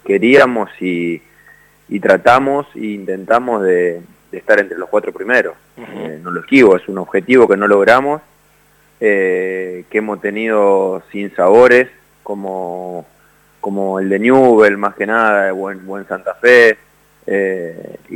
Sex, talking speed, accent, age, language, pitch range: male, 140 wpm, Argentinian, 20-39, Spanish, 95-135 Hz